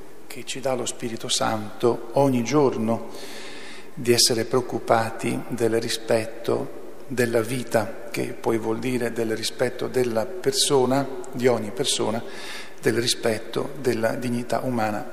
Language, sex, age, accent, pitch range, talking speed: Italian, male, 50-69, native, 120-140 Hz, 125 wpm